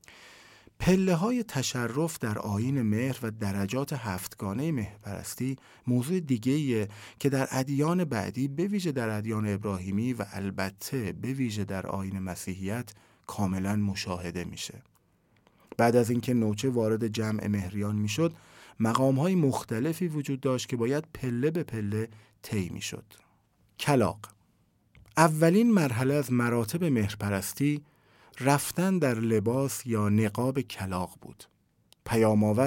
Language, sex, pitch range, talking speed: Persian, male, 105-140 Hz, 120 wpm